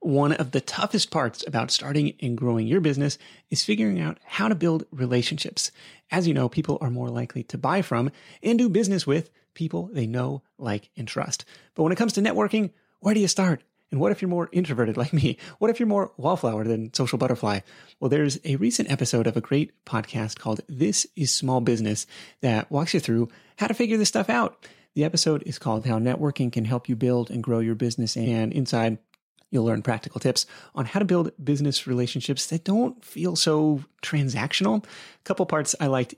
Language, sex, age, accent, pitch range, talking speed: English, male, 30-49, American, 125-170 Hz, 205 wpm